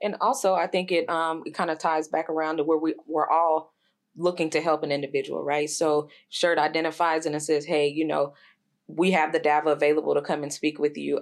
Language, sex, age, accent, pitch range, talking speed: English, female, 20-39, American, 150-170 Hz, 225 wpm